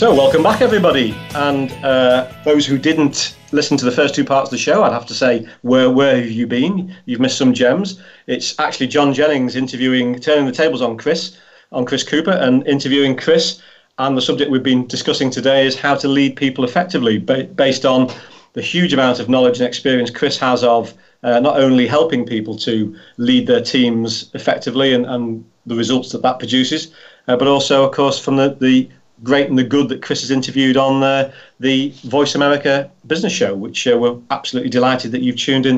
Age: 40-59